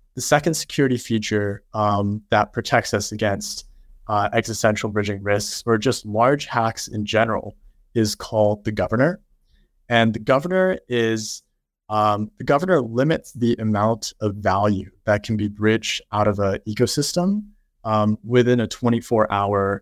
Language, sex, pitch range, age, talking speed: English, male, 100-125 Hz, 20-39, 140 wpm